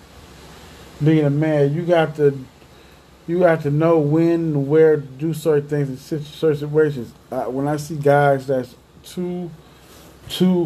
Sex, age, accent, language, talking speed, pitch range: male, 20-39, American, English, 160 wpm, 120-160 Hz